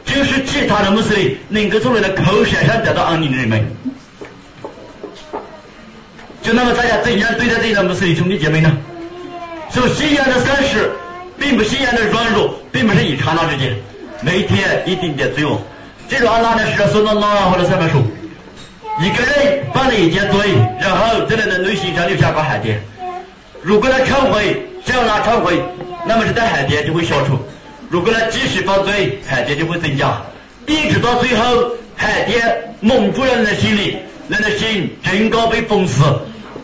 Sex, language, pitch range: male, Chinese, 155-230 Hz